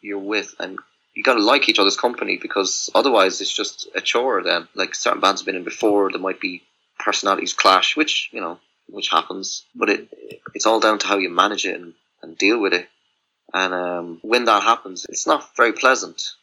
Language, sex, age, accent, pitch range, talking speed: English, male, 20-39, British, 95-110 Hz, 210 wpm